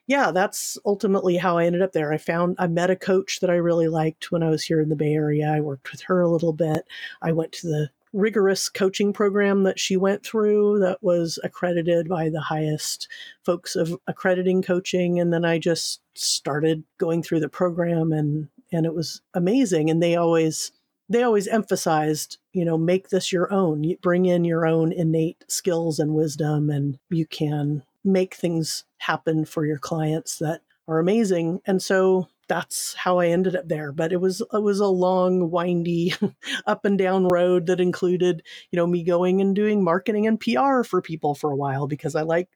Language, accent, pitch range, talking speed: English, American, 165-195 Hz, 195 wpm